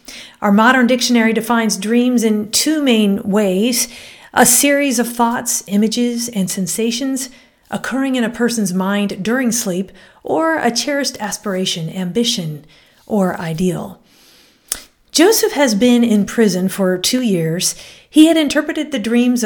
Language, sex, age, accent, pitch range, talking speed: English, female, 40-59, American, 200-255 Hz, 135 wpm